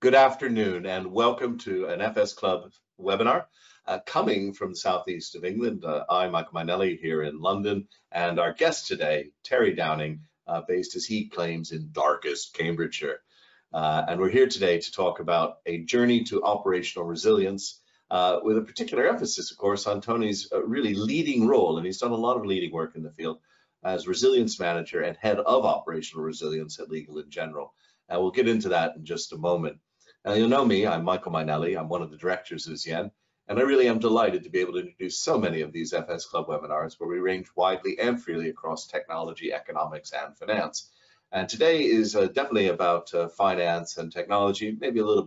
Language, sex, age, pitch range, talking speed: English, male, 50-69, 85-120 Hz, 200 wpm